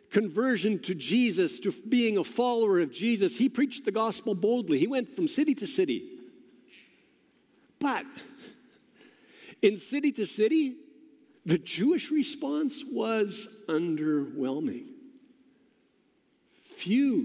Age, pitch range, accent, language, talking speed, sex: 50-69, 215-295 Hz, American, English, 110 wpm, male